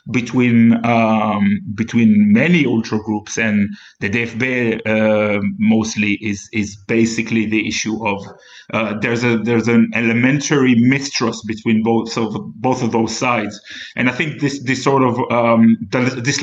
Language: English